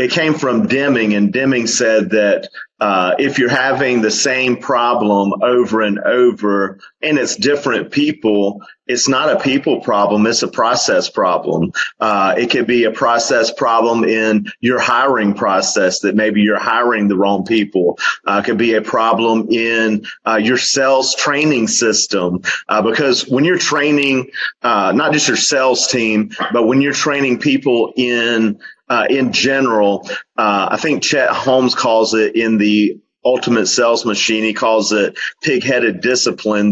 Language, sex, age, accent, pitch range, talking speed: English, male, 40-59, American, 105-135 Hz, 160 wpm